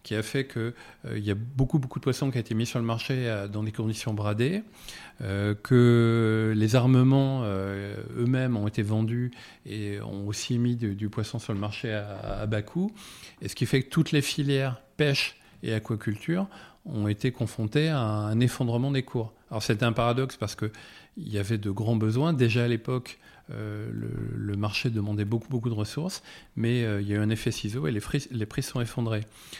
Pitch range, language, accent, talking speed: 105-125 Hz, French, French, 210 wpm